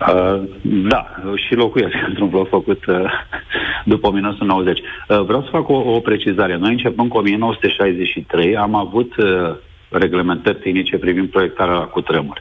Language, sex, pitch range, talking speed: Romanian, male, 95-105 Hz, 145 wpm